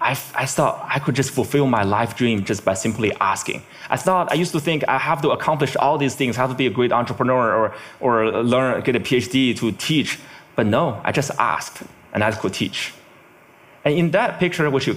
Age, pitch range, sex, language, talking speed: 20-39, 115-150 Hz, male, English, 230 wpm